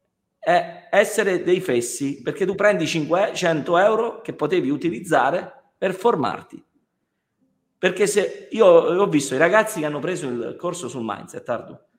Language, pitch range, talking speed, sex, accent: Italian, 150-230 Hz, 145 wpm, male, native